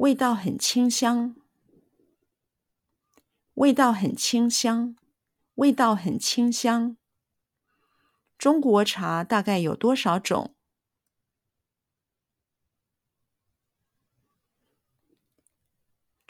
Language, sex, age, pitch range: Chinese, female, 50-69, 165-240 Hz